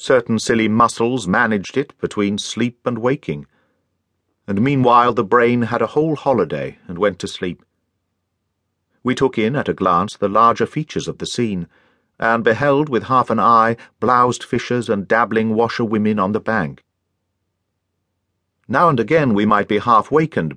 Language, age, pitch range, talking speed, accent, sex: English, 50-69, 95-120 Hz, 160 wpm, British, male